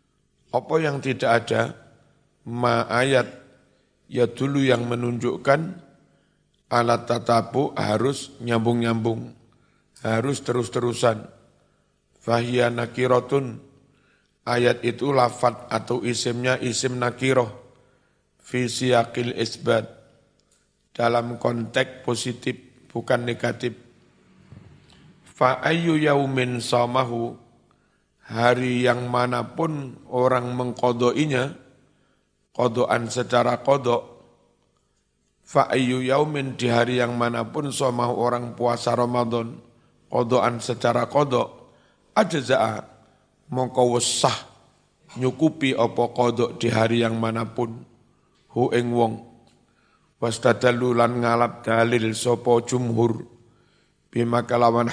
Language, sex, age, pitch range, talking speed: Indonesian, male, 50-69, 120-130 Hz, 80 wpm